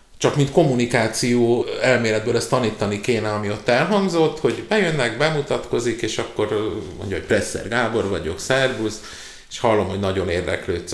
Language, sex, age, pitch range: Hungarian, male, 50-69, 110-155 Hz